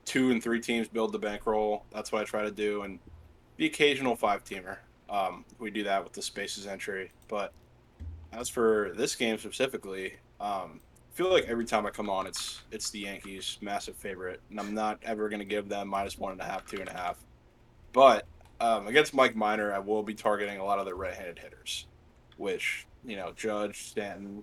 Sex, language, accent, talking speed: male, English, American, 190 wpm